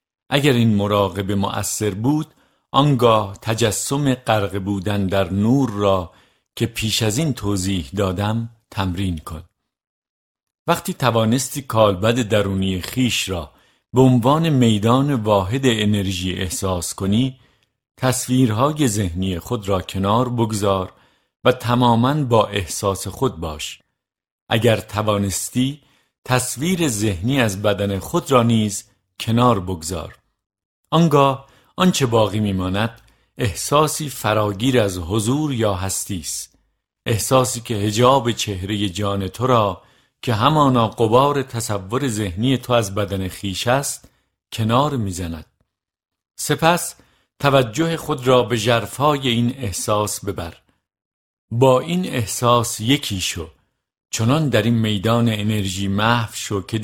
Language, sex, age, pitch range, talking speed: Persian, male, 50-69, 100-130 Hz, 115 wpm